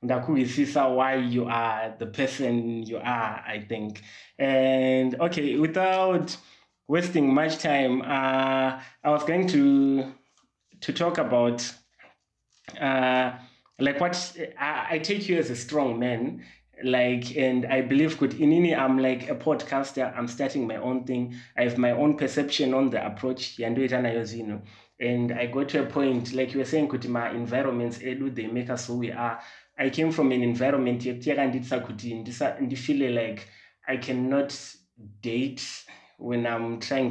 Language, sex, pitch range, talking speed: English, male, 120-140 Hz, 140 wpm